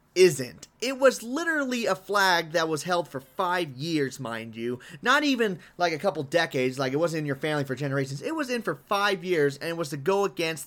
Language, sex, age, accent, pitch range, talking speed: English, male, 30-49, American, 140-205 Hz, 225 wpm